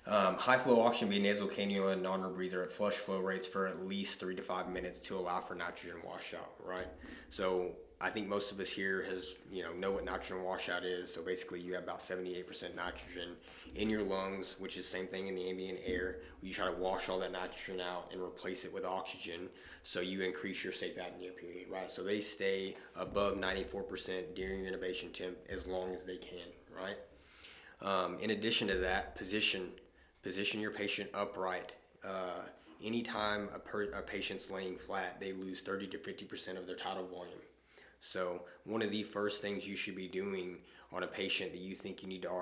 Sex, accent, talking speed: male, American, 200 wpm